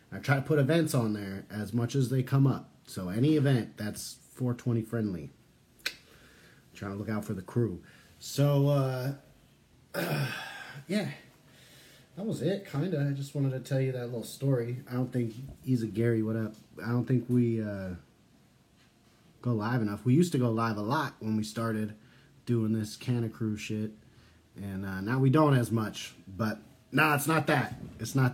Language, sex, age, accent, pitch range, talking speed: English, male, 30-49, American, 110-135 Hz, 190 wpm